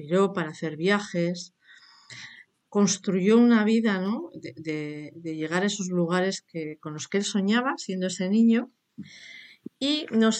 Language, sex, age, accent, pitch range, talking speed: Spanish, female, 50-69, Spanish, 170-215 Hz, 145 wpm